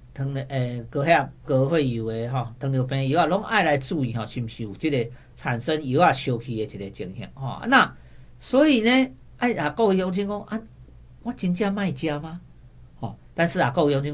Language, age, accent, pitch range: Chinese, 50-69, American, 125-165 Hz